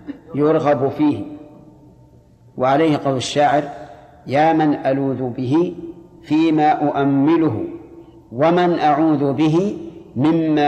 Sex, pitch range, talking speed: male, 130-165 Hz, 85 wpm